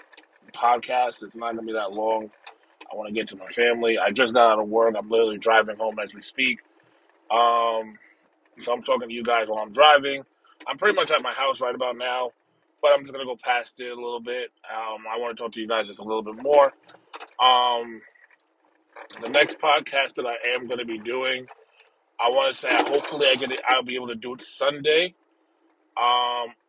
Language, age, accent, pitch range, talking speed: English, 20-39, American, 110-125 Hz, 220 wpm